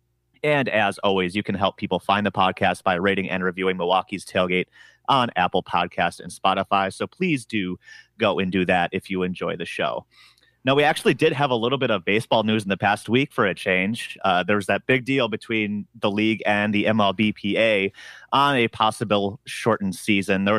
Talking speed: 200 wpm